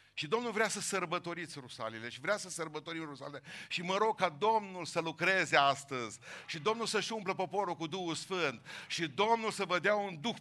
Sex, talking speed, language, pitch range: male, 195 wpm, Romanian, 150-195 Hz